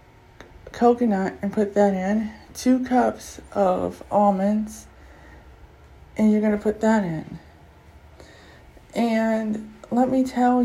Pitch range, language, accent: 190-230 Hz, English, American